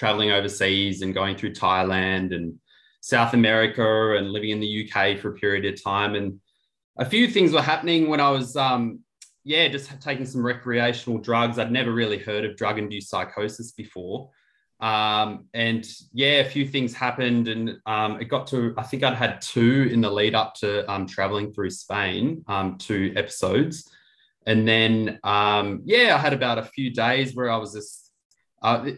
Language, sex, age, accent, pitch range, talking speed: English, male, 20-39, Australian, 100-120 Hz, 180 wpm